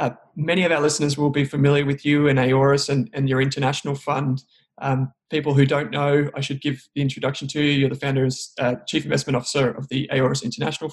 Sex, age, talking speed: male, 20-39, 220 wpm